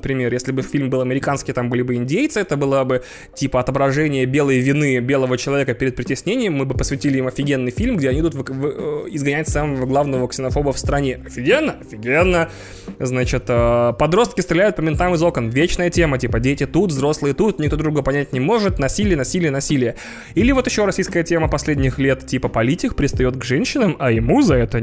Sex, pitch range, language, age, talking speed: male, 130-170 Hz, Russian, 20-39, 185 wpm